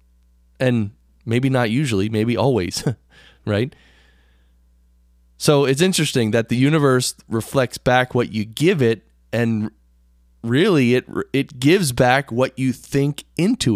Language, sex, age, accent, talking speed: English, male, 20-39, American, 125 wpm